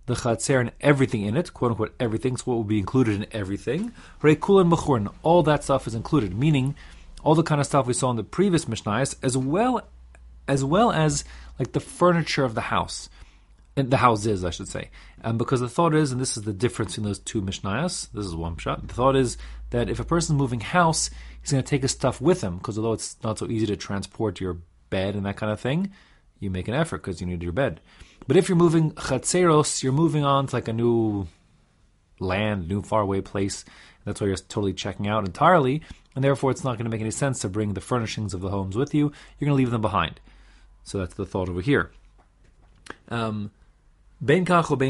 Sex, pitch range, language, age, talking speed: male, 100-145 Hz, English, 30-49, 215 wpm